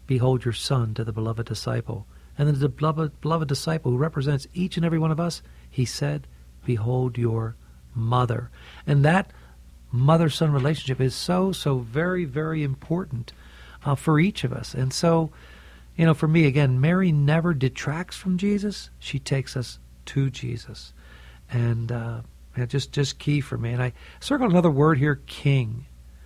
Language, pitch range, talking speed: English, 115-160 Hz, 160 wpm